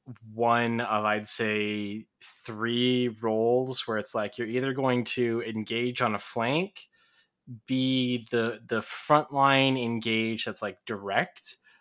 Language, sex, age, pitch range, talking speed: English, male, 20-39, 110-130 Hz, 125 wpm